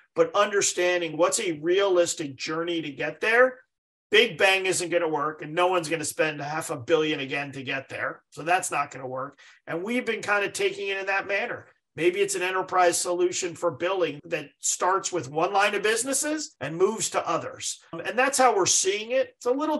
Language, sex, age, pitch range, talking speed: English, male, 40-59, 165-225 Hz, 215 wpm